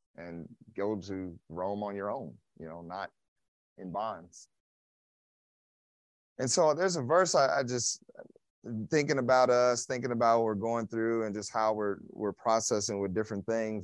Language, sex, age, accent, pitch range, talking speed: English, male, 30-49, American, 95-120 Hz, 165 wpm